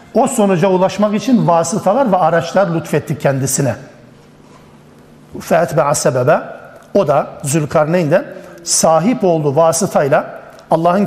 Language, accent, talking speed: Turkish, native, 105 wpm